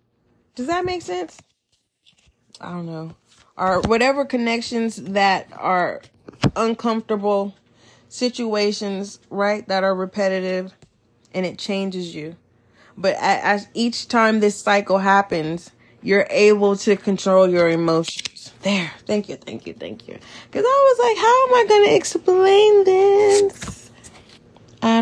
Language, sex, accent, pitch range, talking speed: English, female, American, 150-230 Hz, 125 wpm